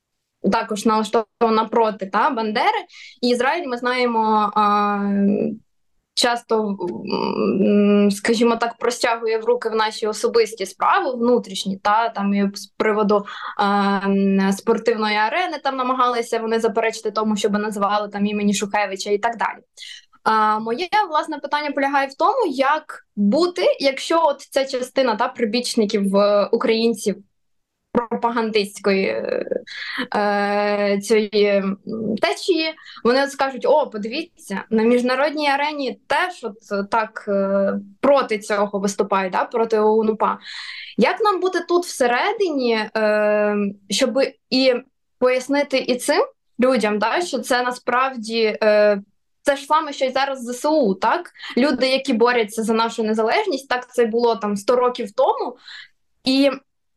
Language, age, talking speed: Ukrainian, 20-39, 120 wpm